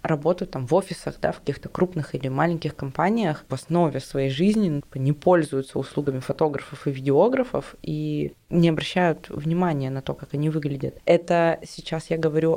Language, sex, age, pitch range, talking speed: Russian, female, 20-39, 150-175 Hz, 160 wpm